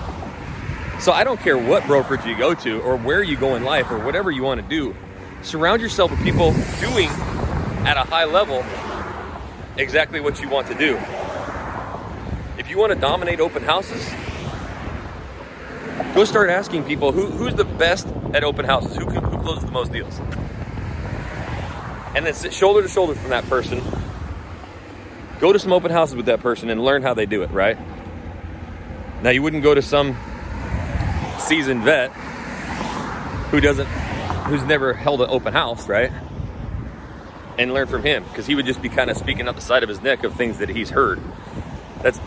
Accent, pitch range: American, 90-140 Hz